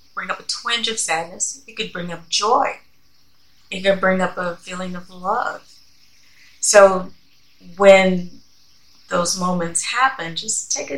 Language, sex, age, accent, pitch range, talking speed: English, female, 30-49, American, 155-185 Hz, 140 wpm